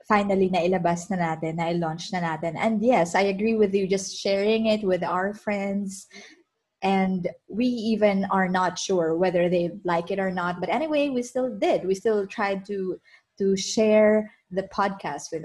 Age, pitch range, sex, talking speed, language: 20-39, 175-220 Hz, female, 175 wpm, Filipino